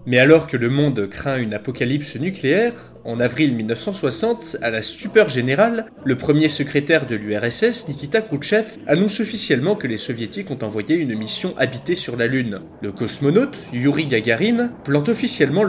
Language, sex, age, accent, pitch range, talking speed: French, male, 20-39, French, 120-175 Hz, 160 wpm